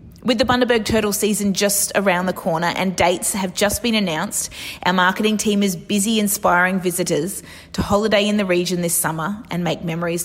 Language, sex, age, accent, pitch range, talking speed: English, female, 20-39, Australian, 165-210 Hz, 185 wpm